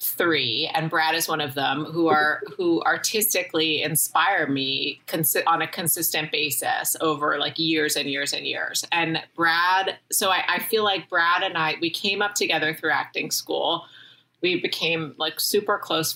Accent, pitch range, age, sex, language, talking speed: American, 150-180 Hz, 30-49, female, English, 170 wpm